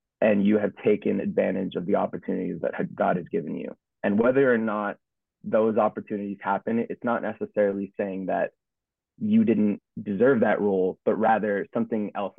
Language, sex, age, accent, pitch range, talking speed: English, male, 20-39, American, 100-115 Hz, 165 wpm